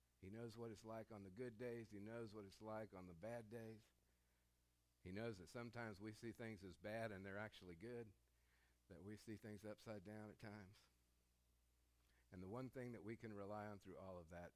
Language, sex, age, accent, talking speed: English, male, 50-69, American, 215 wpm